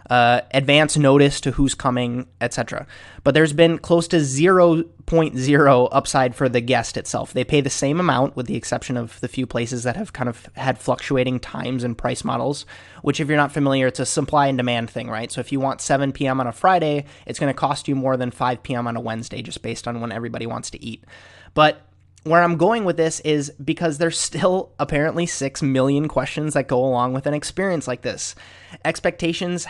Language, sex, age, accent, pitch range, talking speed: English, male, 20-39, American, 125-160 Hz, 205 wpm